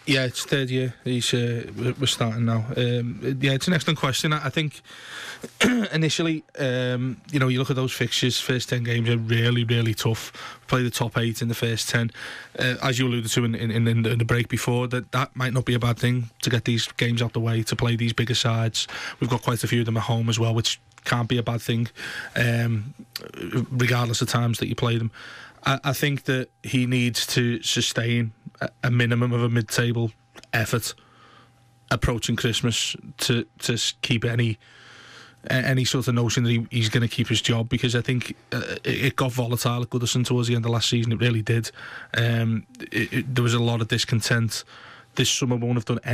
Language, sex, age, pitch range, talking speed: English, male, 20-39, 115-125 Hz, 210 wpm